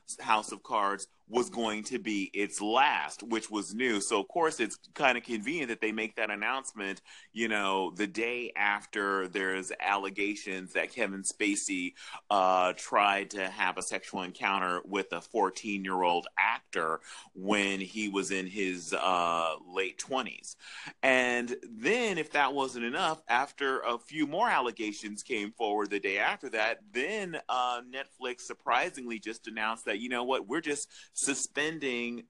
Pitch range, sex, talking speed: 100-135 Hz, male, 160 wpm